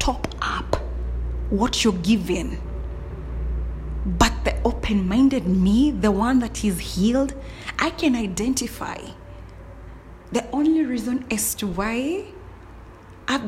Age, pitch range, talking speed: 30-49, 185-245 Hz, 100 wpm